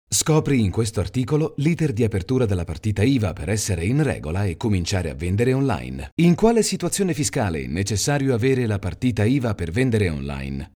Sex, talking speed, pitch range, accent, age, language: male, 180 wpm, 90-125 Hz, native, 30-49, Italian